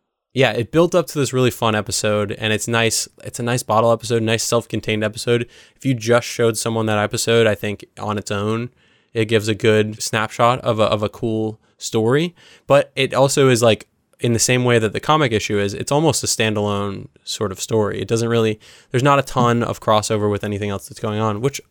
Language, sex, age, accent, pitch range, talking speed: English, male, 20-39, American, 105-120 Hz, 220 wpm